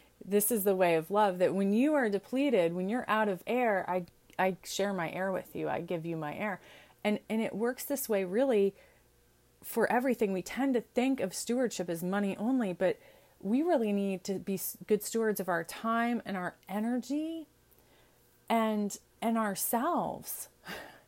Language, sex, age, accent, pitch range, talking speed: English, female, 30-49, American, 190-245 Hz, 180 wpm